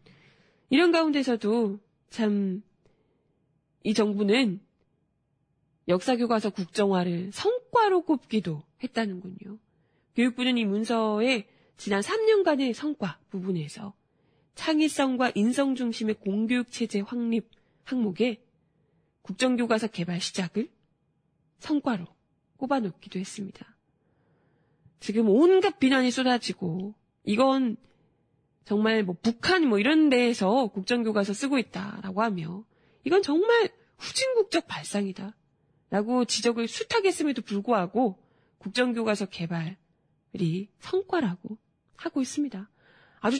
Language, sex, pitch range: Korean, female, 190-260 Hz